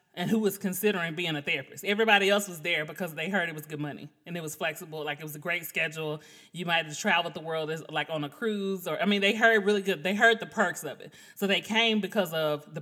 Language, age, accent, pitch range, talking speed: English, 30-49, American, 170-210 Hz, 265 wpm